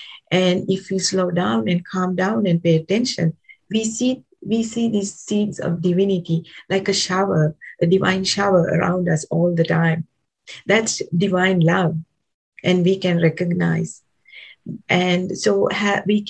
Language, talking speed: English, 150 wpm